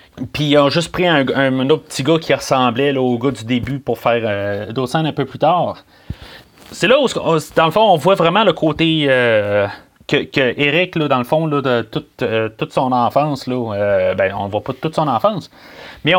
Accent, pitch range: Canadian, 120-155 Hz